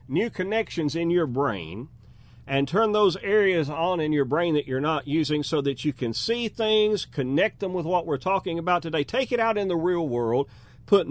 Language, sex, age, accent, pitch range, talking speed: English, male, 40-59, American, 135-195 Hz, 210 wpm